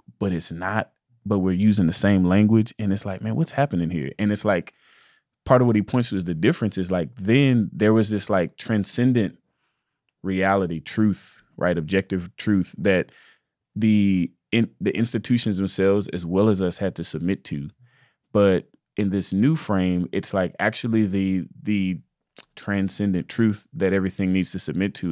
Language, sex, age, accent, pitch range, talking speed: English, male, 20-39, American, 90-105 Hz, 175 wpm